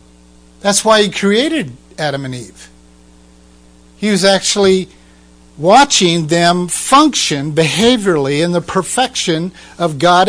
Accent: American